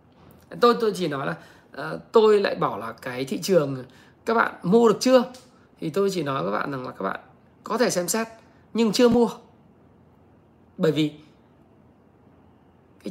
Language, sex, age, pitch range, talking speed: Vietnamese, male, 20-39, 160-240 Hz, 175 wpm